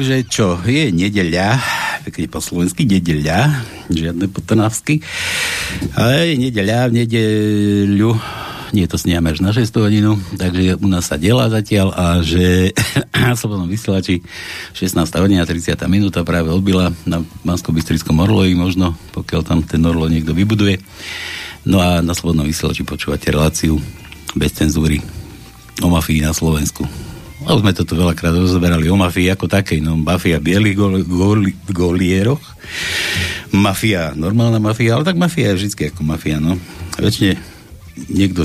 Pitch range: 85-100 Hz